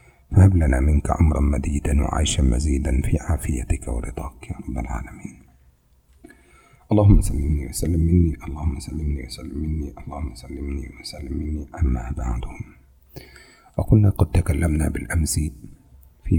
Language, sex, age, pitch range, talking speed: Indonesian, male, 50-69, 70-85 Hz, 115 wpm